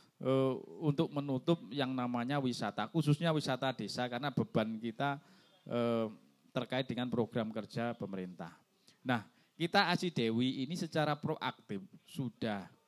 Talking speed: 120 wpm